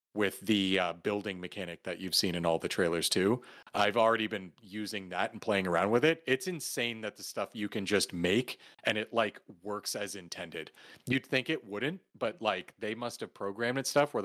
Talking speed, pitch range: 210 wpm, 100-130 Hz